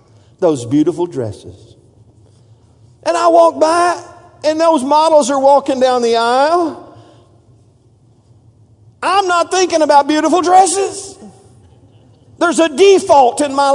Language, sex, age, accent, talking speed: English, male, 50-69, American, 115 wpm